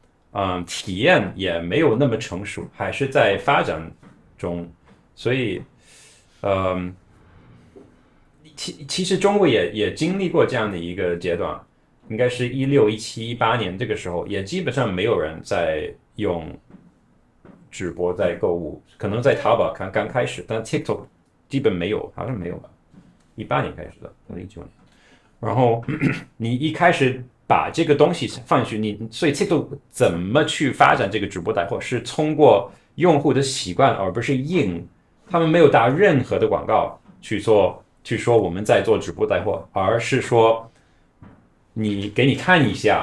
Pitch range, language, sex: 100-145 Hz, Chinese, male